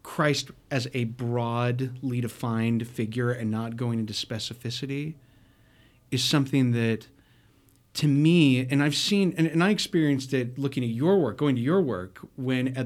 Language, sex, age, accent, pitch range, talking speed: English, male, 40-59, American, 115-140 Hz, 160 wpm